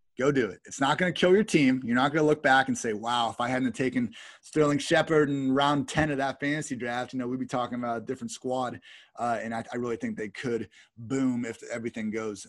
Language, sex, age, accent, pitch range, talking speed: English, male, 30-49, American, 110-130 Hz, 255 wpm